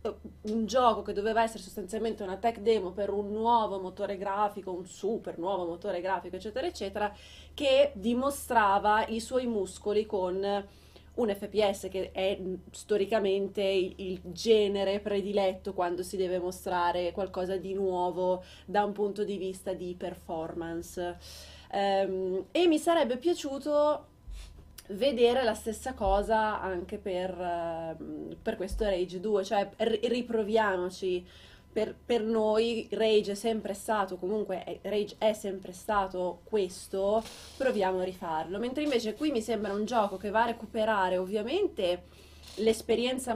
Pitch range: 185-225 Hz